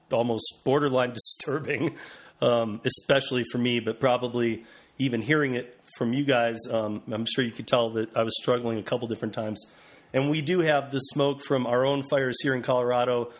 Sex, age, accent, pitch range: male, 30-49, American, 115-130 Hz